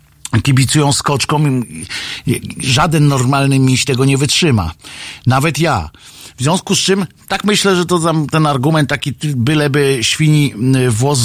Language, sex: Polish, male